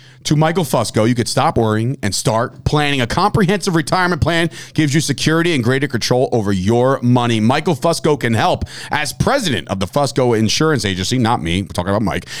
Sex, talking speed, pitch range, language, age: male, 195 wpm, 115-155 Hz, English, 40-59